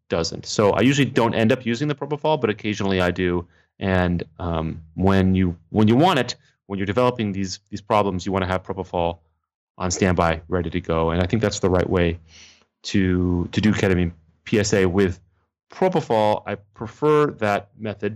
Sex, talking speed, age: male, 185 wpm, 30-49